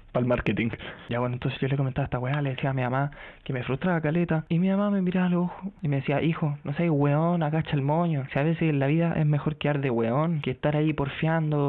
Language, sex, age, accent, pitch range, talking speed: Spanish, male, 20-39, Spanish, 120-160 Hz, 270 wpm